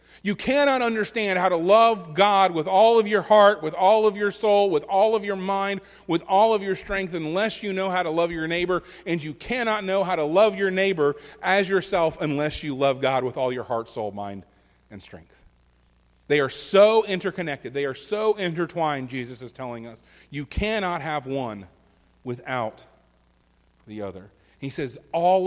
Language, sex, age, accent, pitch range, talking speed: English, male, 40-59, American, 115-195 Hz, 190 wpm